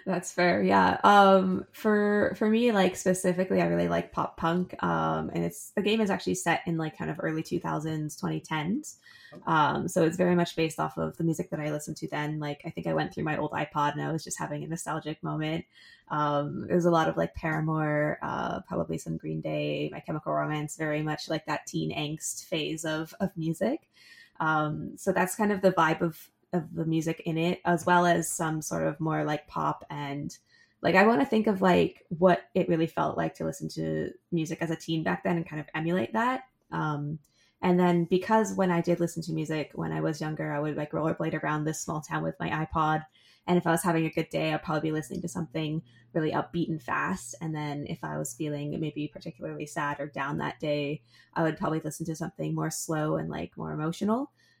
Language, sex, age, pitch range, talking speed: English, female, 20-39, 150-175 Hz, 225 wpm